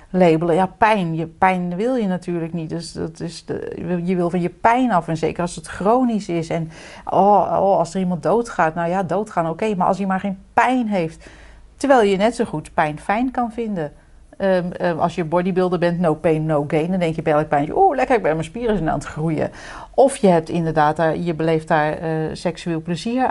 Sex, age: female, 40-59